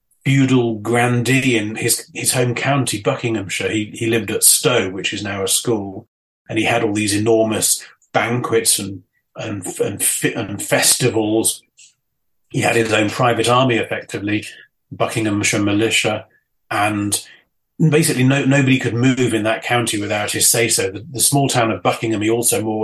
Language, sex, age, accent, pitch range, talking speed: English, male, 30-49, British, 110-125 Hz, 160 wpm